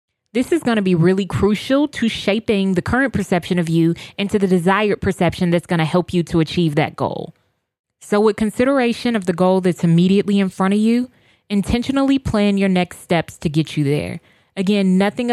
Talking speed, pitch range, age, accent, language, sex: 195 wpm, 175-215 Hz, 20-39, American, English, female